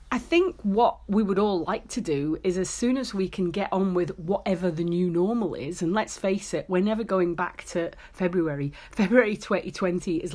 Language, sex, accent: English, female, British